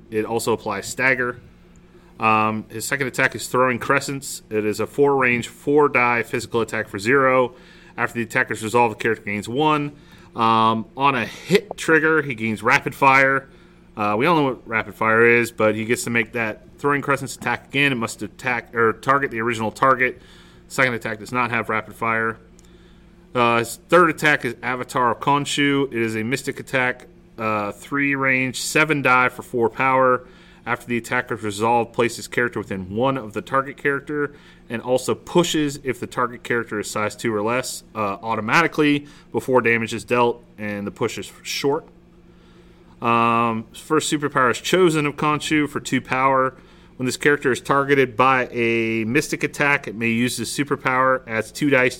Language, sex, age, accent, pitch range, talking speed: English, male, 30-49, American, 115-140 Hz, 180 wpm